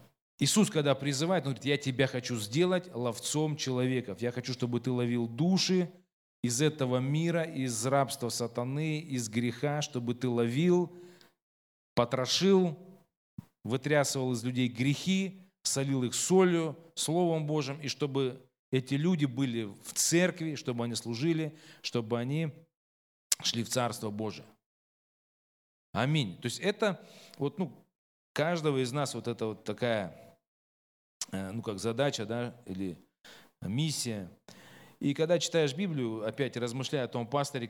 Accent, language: native, Russian